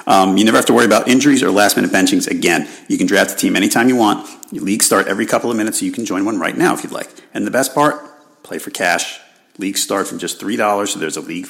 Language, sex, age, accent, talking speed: English, male, 40-59, American, 275 wpm